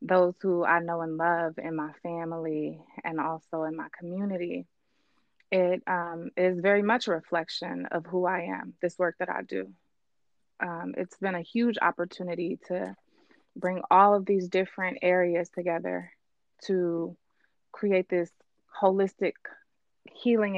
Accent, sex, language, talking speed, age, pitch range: American, female, English, 140 wpm, 20-39, 175-195 Hz